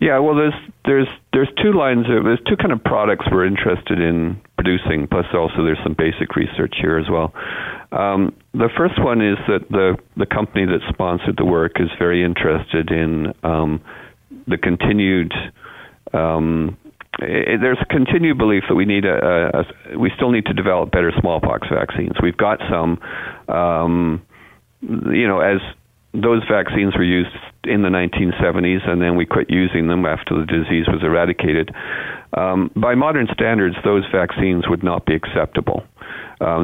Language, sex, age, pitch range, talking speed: English, male, 50-69, 80-105 Hz, 165 wpm